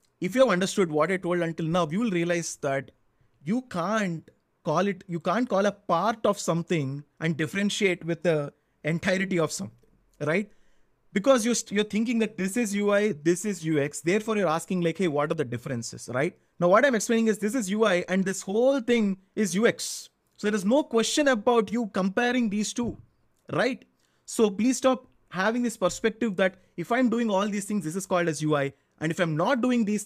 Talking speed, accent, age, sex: 200 wpm, Indian, 20-39, male